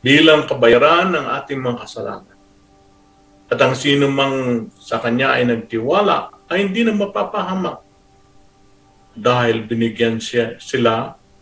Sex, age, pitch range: male, 50-69, 100-140 Hz